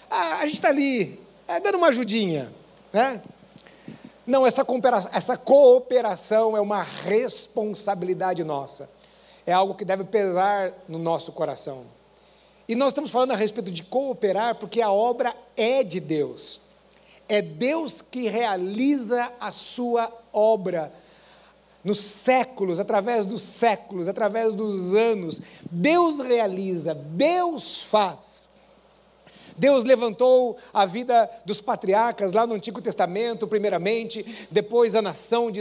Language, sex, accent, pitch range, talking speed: Portuguese, male, Brazilian, 205-265 Hz, 120 wpm